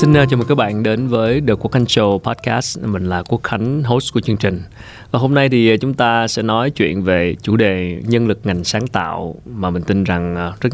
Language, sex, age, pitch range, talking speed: Vietnamese, male, 20-39, 95-115 Hz, 235 wpm